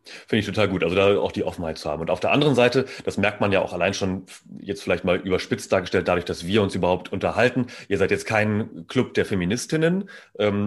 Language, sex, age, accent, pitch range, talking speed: German, male, 30-49, German, 90-105 Hz, 235 wpm